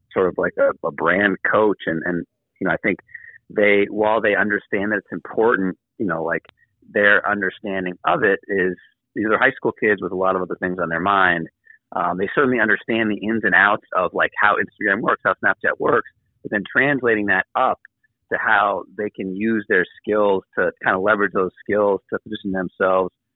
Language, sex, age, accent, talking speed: English, male, 30-49, American, 205 wpm